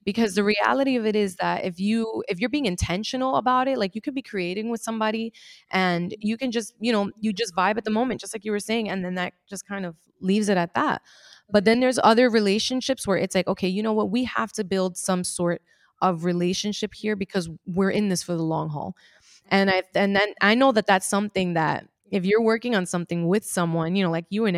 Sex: female